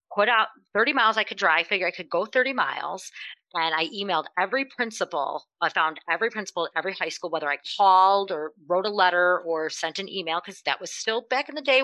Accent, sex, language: American, female, English